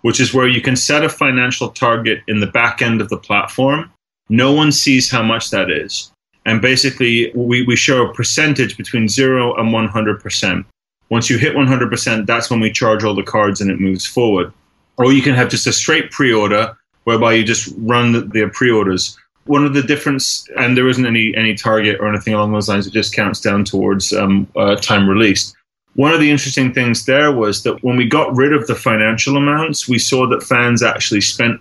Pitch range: 105-130 Hz